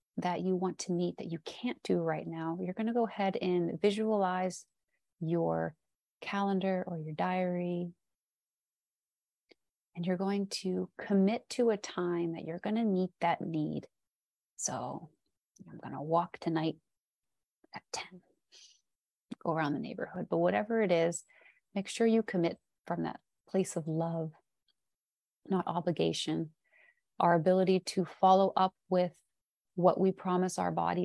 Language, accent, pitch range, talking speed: English, American, 170-195 Hz, 145 wpm